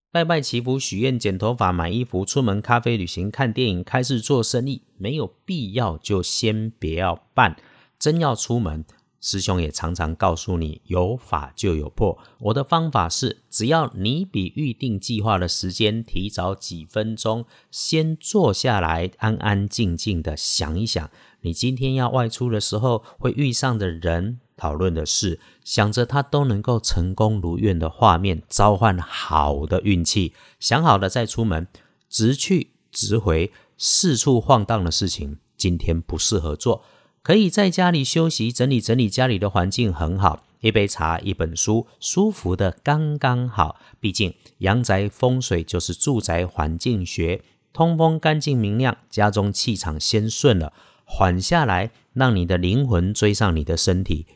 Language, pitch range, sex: Chinese, 90-125 Hz, male